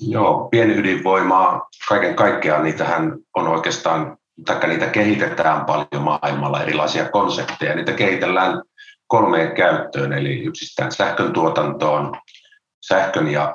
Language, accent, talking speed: Finnish, native, 100 wpm